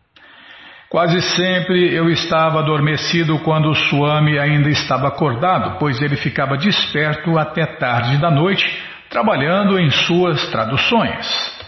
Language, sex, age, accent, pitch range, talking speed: Portuguese, male, 60-79, Brazilian, 145-180 Hz, 120 wpm